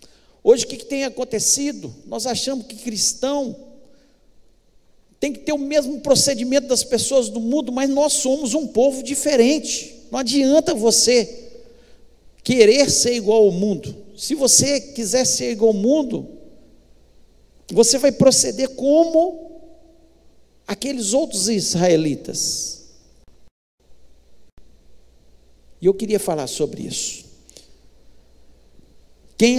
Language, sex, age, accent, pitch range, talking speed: Portuguese, male, 50-69, Brazilian, 195-270 Hz, 110 wpm